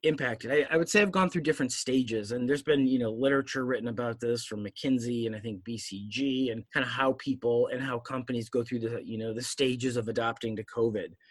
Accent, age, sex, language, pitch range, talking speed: American, 30-49, male, English, 125-165 Hz, 235 wpm